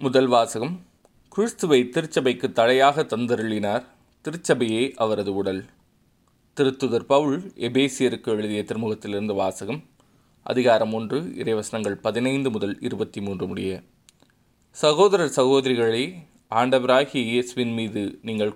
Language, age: Tamil, 20-39